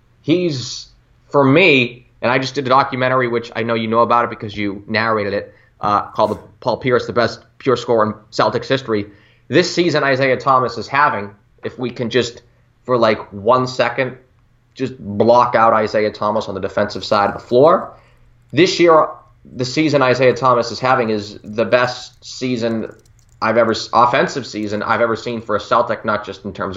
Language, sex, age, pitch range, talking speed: English, male, 20-39, 105-130 Hz, 190 wpm